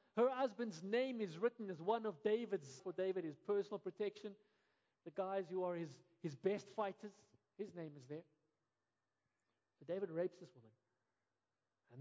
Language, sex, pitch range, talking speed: English, male, 155-225 Hz, 160 wpm